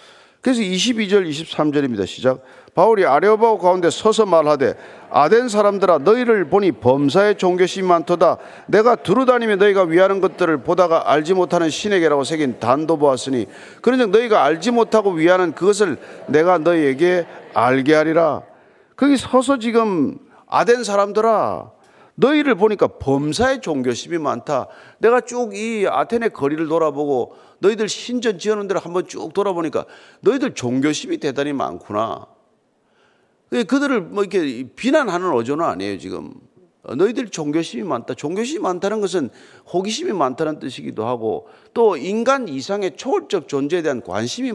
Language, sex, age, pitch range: Korean, male, 40-59, 160-245 Hz